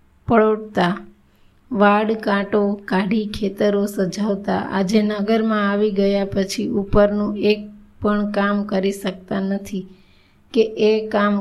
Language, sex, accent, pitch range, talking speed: Gujarati, female, native, 195-210 Hz, 110 wpm